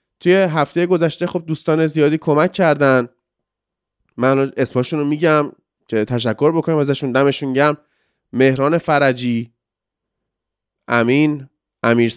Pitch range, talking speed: 120-160 Hz, 110 wpm